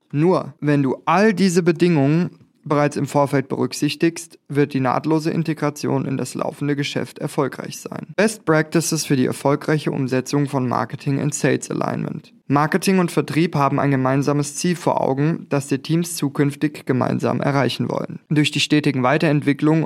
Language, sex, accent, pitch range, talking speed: German, male, German, 145-170 Hz, 150 wpm